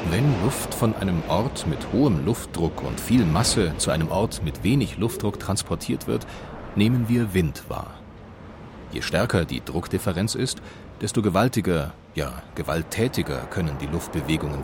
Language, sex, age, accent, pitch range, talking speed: German, male, 40-59, German, 85-115 Hz, 145 wpm